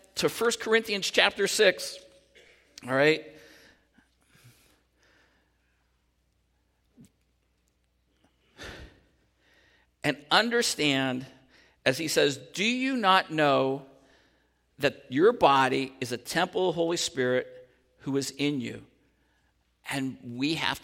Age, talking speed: 50-69, 95 wpm